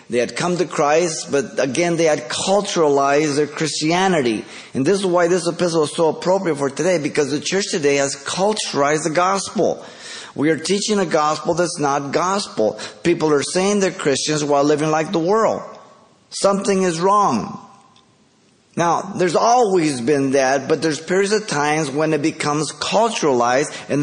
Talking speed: 165 wpm